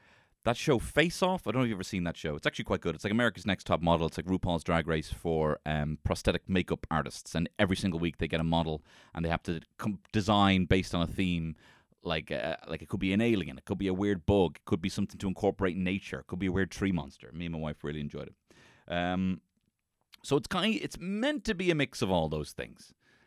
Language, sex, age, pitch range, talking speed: English, male, 30-49, 85-120 Hz, 265 wpm